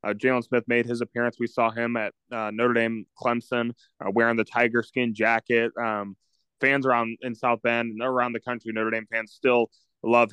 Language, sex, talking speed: English, male, 205 wpm